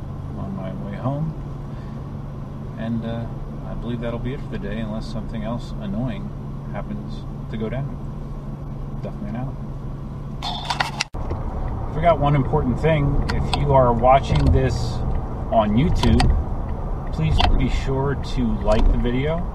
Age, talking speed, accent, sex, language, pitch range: 30-49, 135 wpm, American, male, English, 75-120 Hz